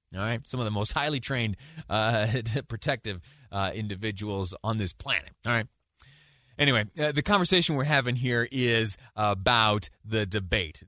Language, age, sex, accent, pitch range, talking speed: English, 30-49, male, American, 105-145 Hz, 155 wpm